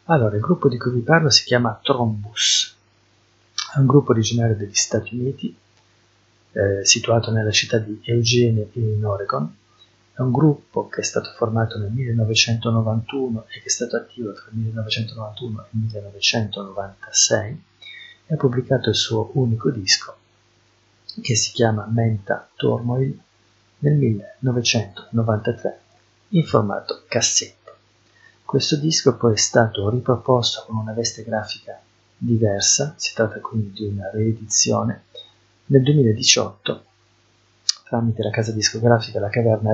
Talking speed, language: 130 wpm, Italian